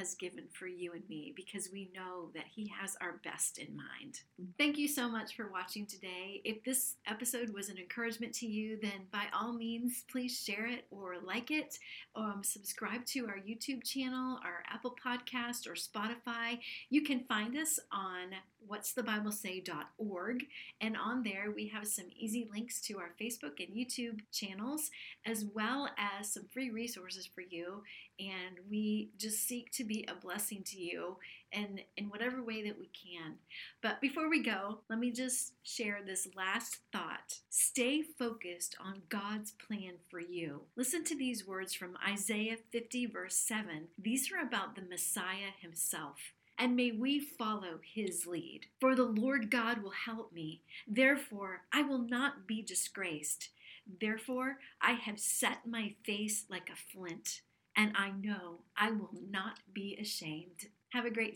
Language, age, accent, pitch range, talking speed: English, 40-59, American, 190-240 Hz, 165 wpm